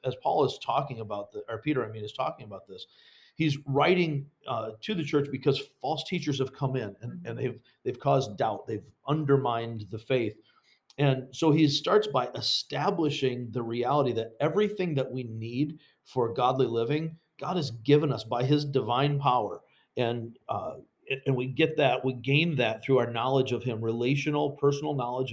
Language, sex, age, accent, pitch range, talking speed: English, male, 40-59, American, 115-145 Hz, 180 wpm